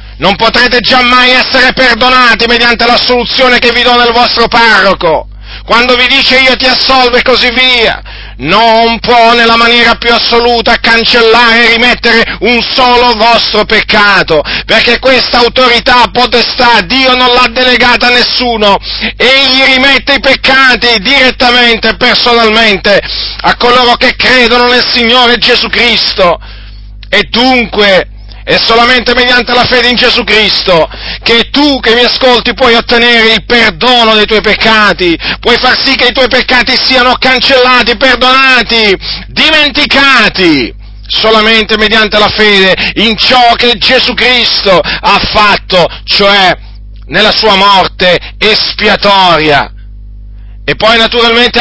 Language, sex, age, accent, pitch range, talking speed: Italian, male, 40-59, native, 215-250 Hz, 130 wpm